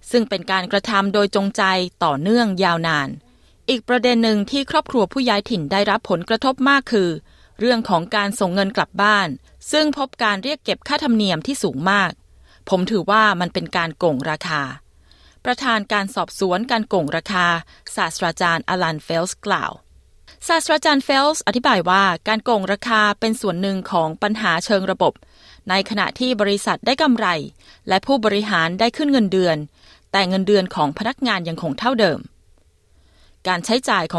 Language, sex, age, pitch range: Thai, female, 20-39, 185-235 Hz